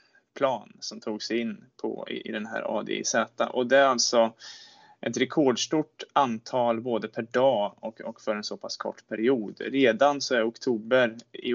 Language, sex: Swedish, male